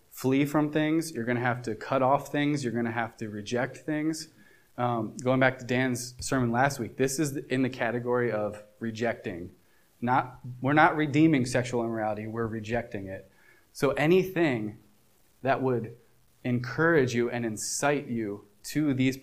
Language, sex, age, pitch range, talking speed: English, male, 20-39, 115-135 Hz, 165 wpm